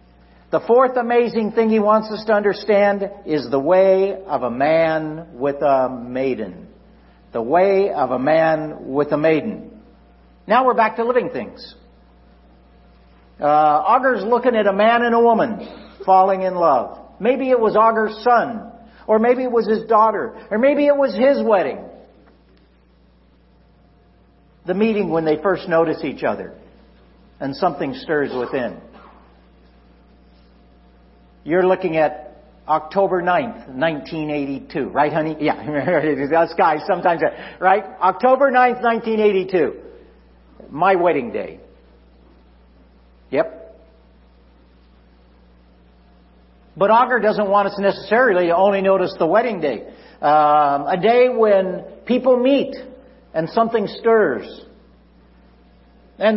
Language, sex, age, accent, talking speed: English, male, 60-79, American, 120 wpm